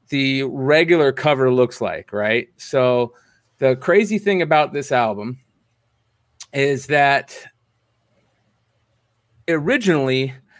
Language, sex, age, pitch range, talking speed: English, male, 30-49, 120-155 Hz, 90 wpm